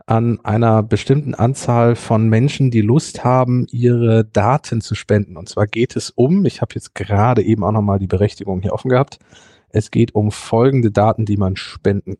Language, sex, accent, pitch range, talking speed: German, male, German, 105-130 Hz, 185 wpm